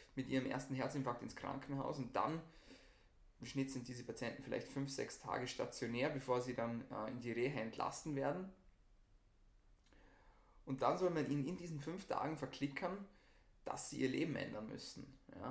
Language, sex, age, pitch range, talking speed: German, male, 20-39, 110-140 Hz, 160 wpm